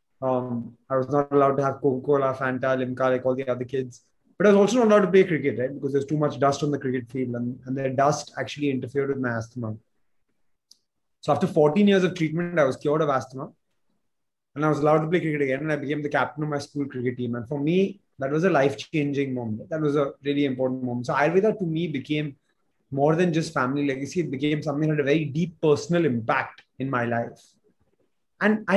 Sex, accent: male, native